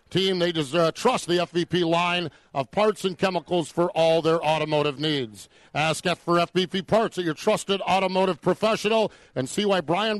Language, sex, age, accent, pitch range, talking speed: English, male, 50-69, American, 170-210 Hz, 175 wpm